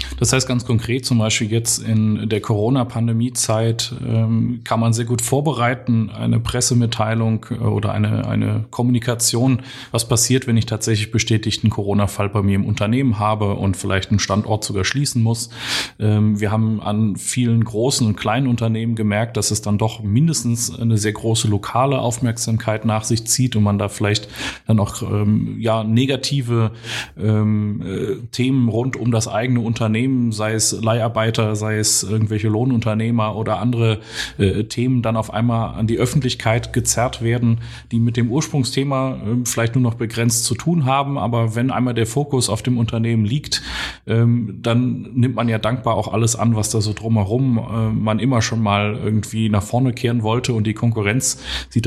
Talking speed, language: 165 wpm, German